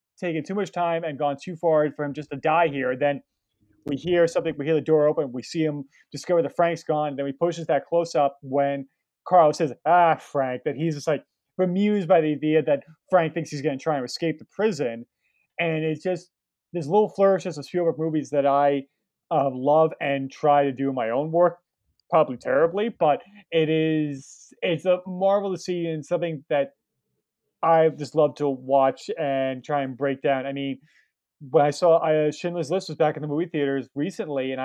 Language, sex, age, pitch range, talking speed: English, male, 30-49, 140-165 Hz, 210 wpm